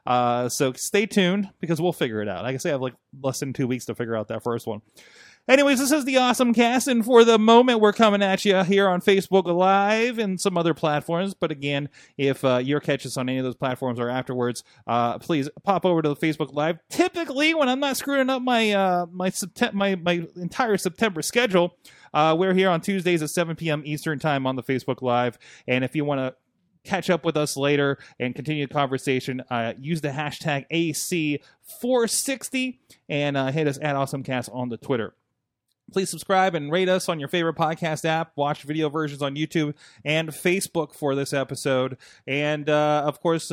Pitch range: 140-185 Hz